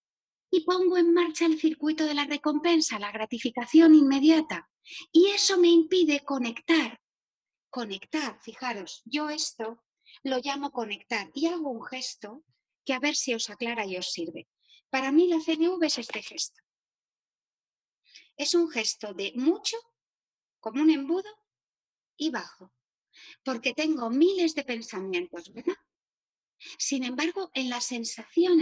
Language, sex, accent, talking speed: Spanish, female, Spanish, 135 wpm